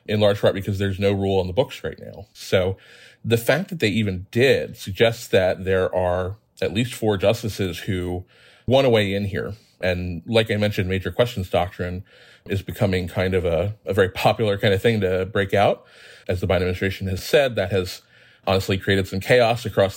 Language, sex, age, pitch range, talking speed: English, male, 30-49, 95-115 Hz, 200 wpm